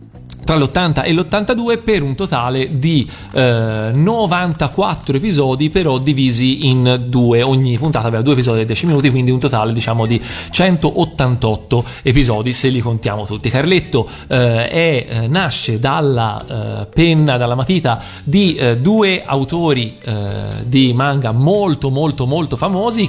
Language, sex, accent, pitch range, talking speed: Italian, male, native, 120-150 Hz, 140 wpm